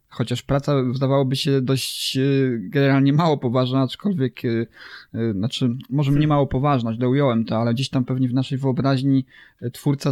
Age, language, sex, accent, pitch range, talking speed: 20-39, English, male, Polish, 115-135 Hz, 150 wpm